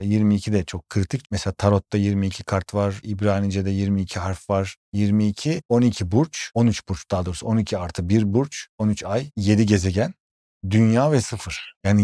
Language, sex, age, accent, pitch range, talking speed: Turkish, male, 40-59, native, 95-120 Hz, 155 wpm